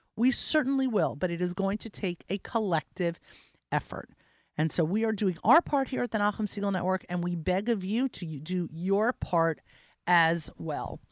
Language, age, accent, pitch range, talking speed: English, 40-59, American, 200-285 Hz, 195 wpm